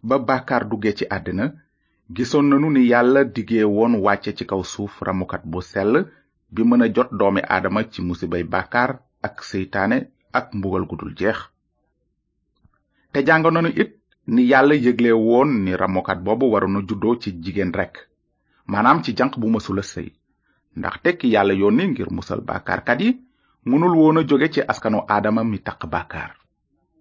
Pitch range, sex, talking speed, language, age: 95-145 Hz, male, 145 wpm, French, 30-49